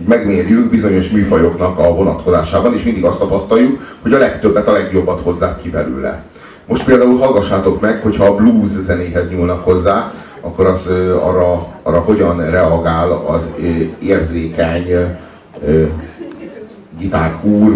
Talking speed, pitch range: 130 wpm, 85-105 Hz